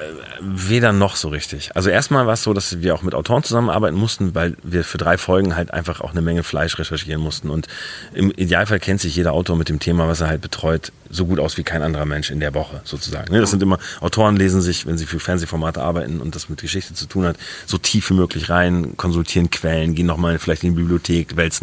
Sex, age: male, 30-49